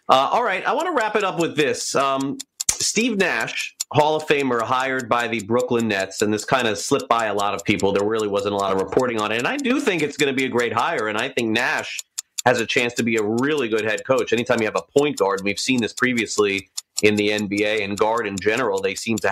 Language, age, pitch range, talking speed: English, 30-49, 110-160 Hz, 265 wpm